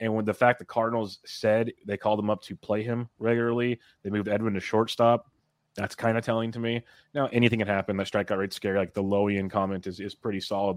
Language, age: English, 30-49